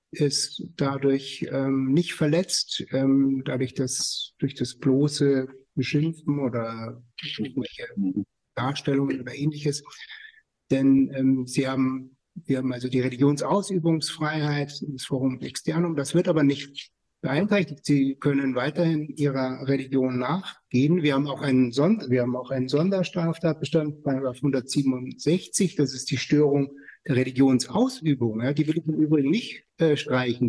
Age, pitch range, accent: 60-79, 130-160 Hz, German